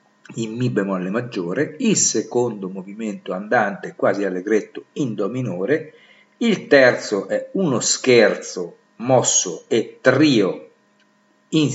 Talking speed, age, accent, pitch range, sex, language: 110 wpm, 50-69, native, 110-180 Hz, male, Italian